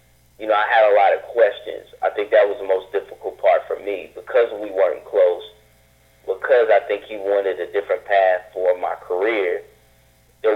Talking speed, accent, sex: 195 wpm, American, male